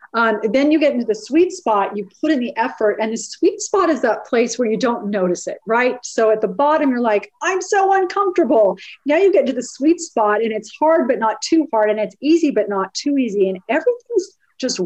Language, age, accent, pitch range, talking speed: English, 40-59, American, 200-280 Hz, 240 wpm